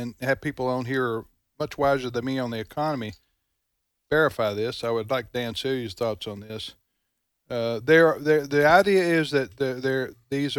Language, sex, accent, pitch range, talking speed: English, male, American, 115-145 Hz, 175 wpm